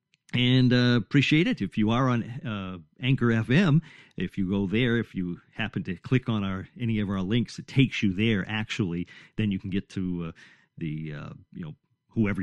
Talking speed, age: 205 wpm, 50-69